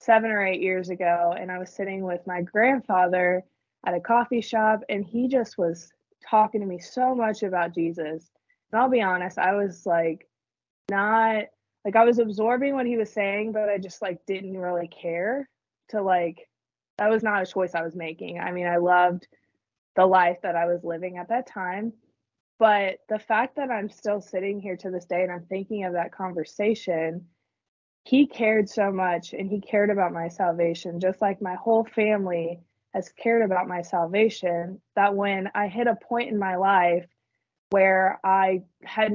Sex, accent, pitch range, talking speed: female, American, 180-220 Hz, 185 wpm